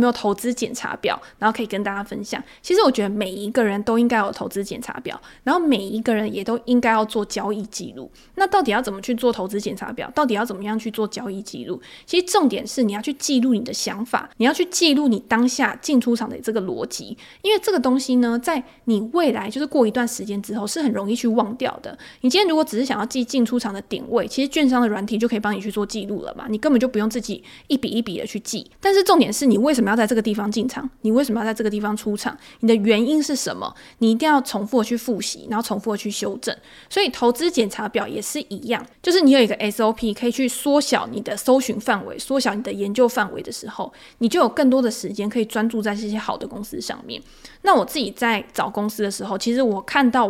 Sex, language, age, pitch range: female, Chinese, 20-39, 215-265 Hz